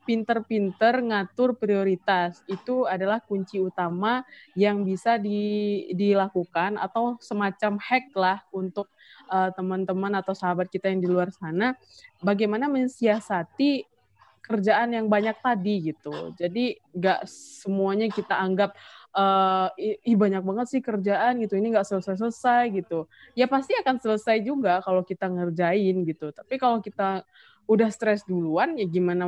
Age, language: 20-39, Indonesian